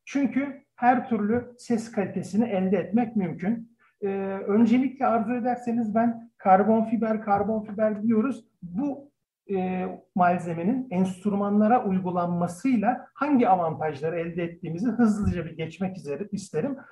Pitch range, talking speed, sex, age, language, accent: 180-235 Hz, 110 wpm, male, 50-69, Turkish, native